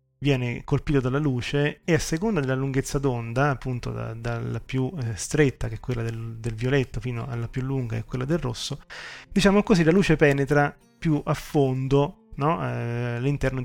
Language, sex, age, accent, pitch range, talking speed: Italian, male, 30-49, native, 120-145 Hz, 185 wpm